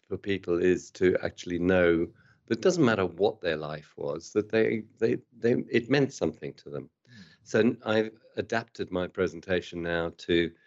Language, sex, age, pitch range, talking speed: English, male, 50-69, 85-100 Hz, 170 wpm